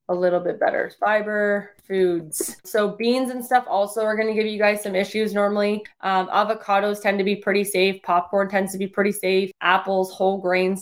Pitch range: 185-215 Hz